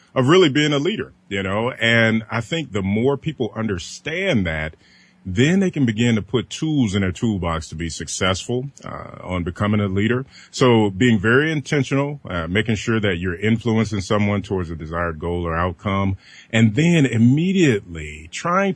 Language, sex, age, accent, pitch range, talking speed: English, male, 30-49, American, 95-125 Hz, 175 wpm